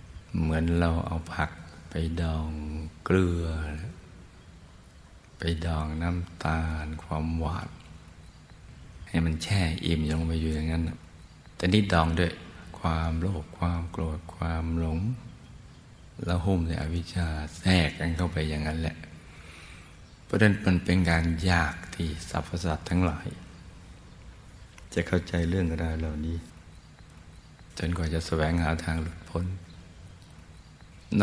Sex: male